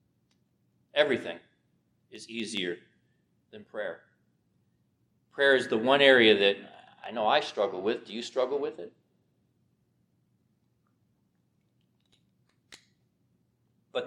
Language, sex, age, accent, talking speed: English, male, 40-59, American, 95 wpm